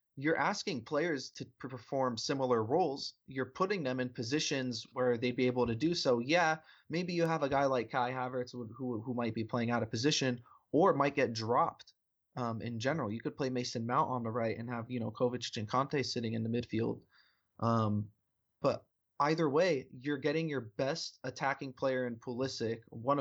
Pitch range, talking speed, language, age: 115-135 Hz, 195 wpm, English, 20-39